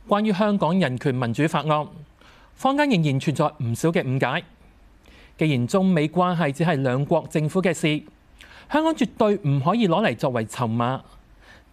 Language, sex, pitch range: Chinese, male, 140-205 Hz